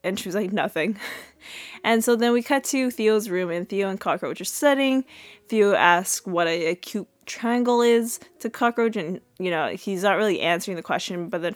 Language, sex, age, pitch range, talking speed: English, female, 20-39, 180-220 Hz, 200 wpm